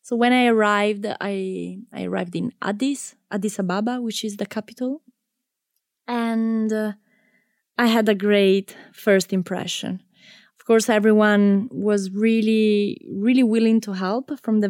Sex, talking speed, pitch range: female, 140 wpm, 190-230 Hz